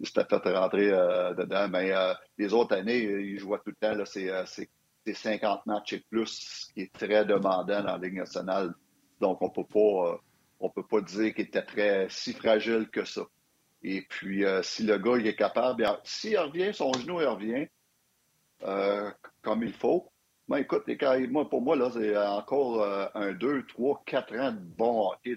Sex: male